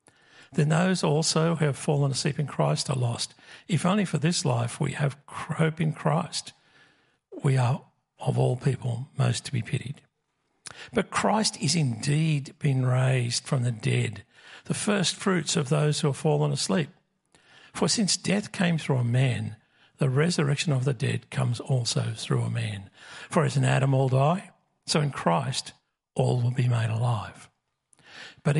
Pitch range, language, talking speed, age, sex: 125-160 Hz, English, 170 wpm, 50-69, male